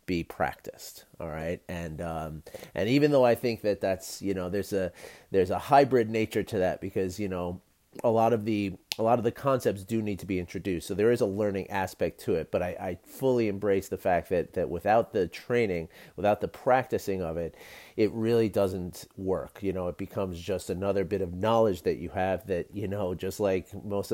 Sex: male